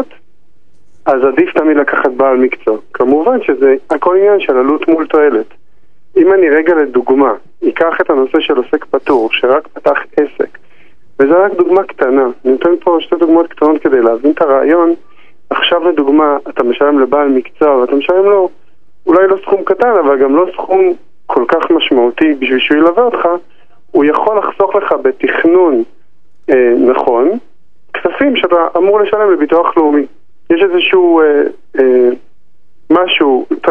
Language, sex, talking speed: Hebrew, male, 145 wpm